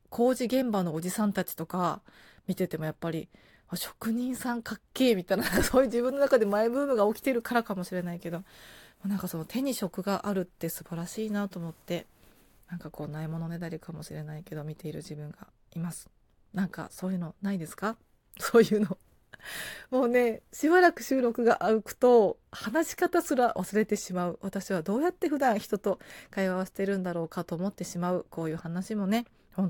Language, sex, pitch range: Japanese, female, 175-230 Hz